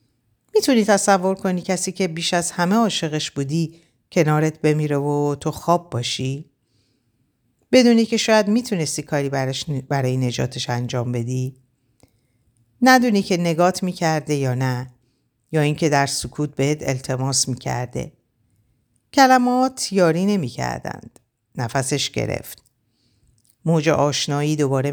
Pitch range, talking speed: 125-170 Hz, 110 wpm